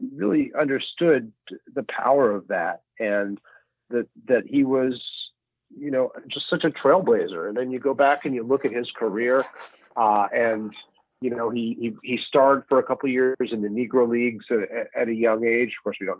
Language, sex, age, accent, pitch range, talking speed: English, male, 40-59, American, 110-135 Hz, 205 wpm